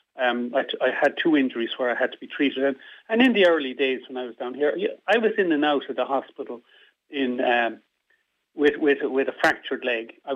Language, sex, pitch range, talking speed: English, male, 125-155 Hz, 240 wpm